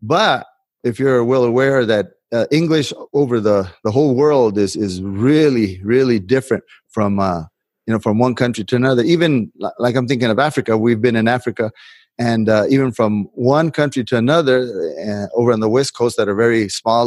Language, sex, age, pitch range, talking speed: English, male, 30-49, 110-135 Hz, 195 wpm